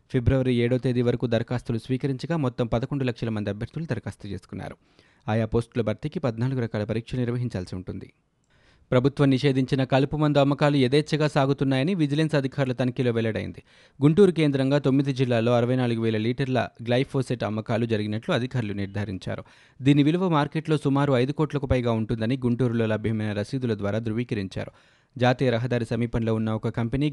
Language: Telugu